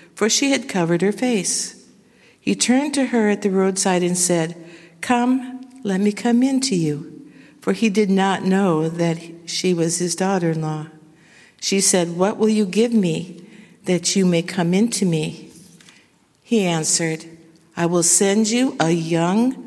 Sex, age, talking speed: female, 60-79, 165 wpm